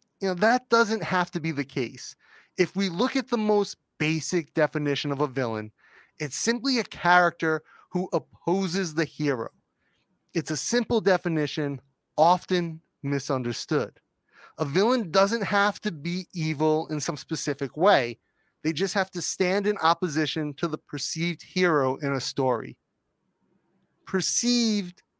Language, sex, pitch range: English, male, 150-190 Hz